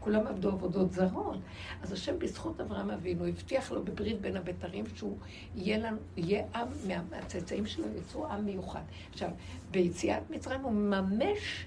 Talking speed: 150 wpm